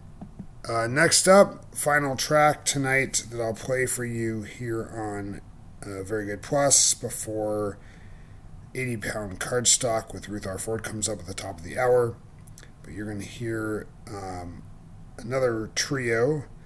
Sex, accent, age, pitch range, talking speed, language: male, American, 30-49, 100-125 Hz, 145 wpm, English